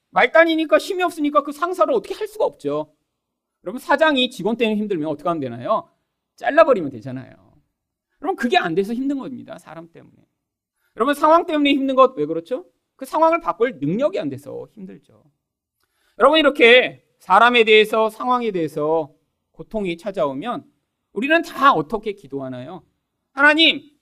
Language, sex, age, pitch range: Korean, male, 40-59, 200-305 Hz